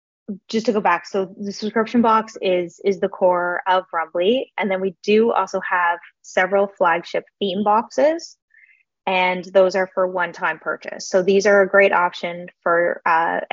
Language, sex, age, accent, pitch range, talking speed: English, female, 20-39, American, 180-210 Hz, 170 wpm